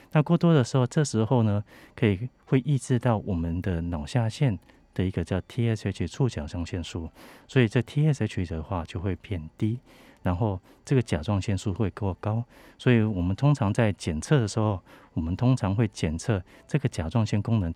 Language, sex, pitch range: Chinese, male, 90-125 Hz